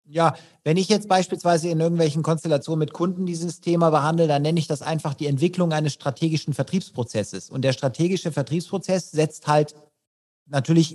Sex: male